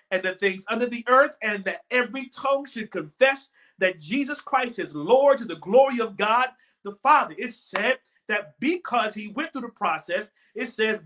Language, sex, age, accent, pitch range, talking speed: English, male, 40-59, American, 210-275 Hz, 190 wpm